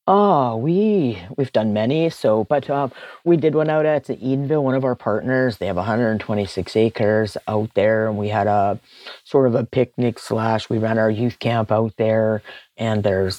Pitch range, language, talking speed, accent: 110-130 Hz, English, 190 wpm, American